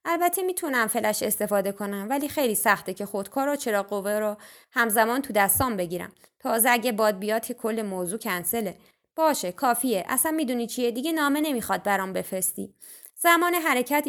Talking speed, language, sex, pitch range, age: 155 wpm, Persian, female, 215-285 Hz, 20-39